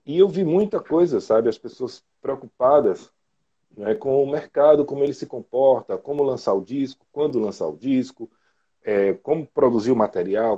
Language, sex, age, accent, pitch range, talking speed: Portuguese, male, 40-59, Brazilian, 105-150 Hz, 170 wpm